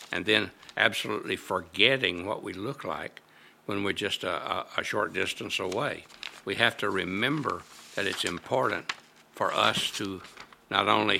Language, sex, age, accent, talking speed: English, male, 60-79, American, 150 wpm